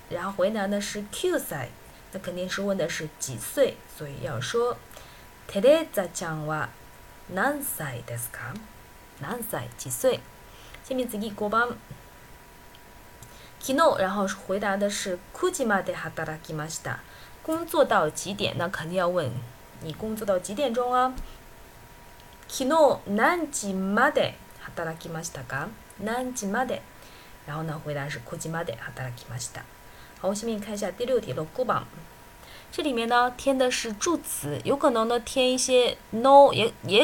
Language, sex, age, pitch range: Chinese, female, 20-39, 155-255 Hz